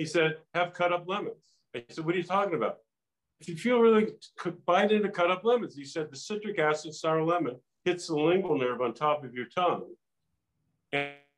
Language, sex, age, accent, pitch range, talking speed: English, male, 50-69, American, 140-180 Hz, 205 wpm